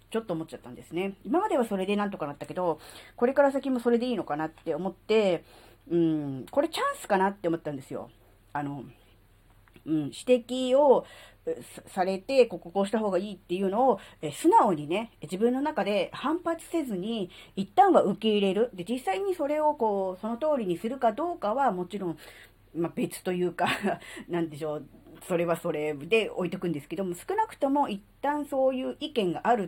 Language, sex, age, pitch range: Japanese, female, 40-59, 160-235 Hz